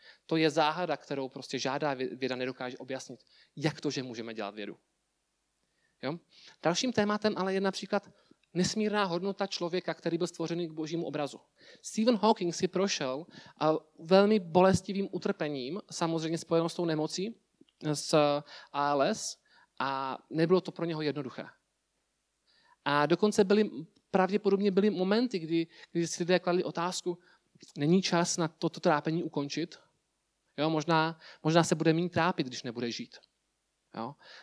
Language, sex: Czech, male